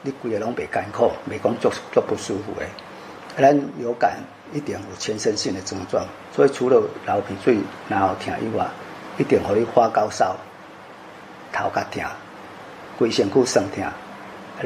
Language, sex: Chinese, male